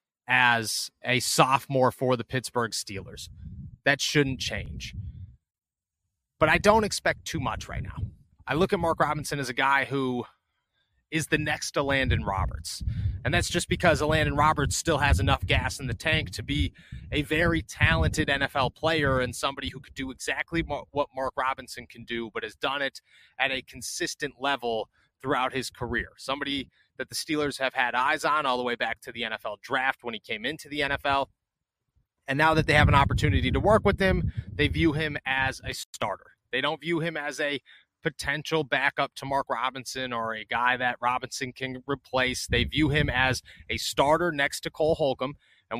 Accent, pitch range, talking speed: American, 125-150 Hz, 185 wpm